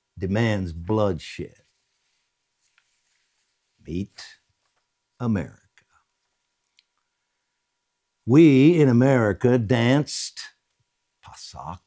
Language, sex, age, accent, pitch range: English, male, 60-79, American, 100-145 Hz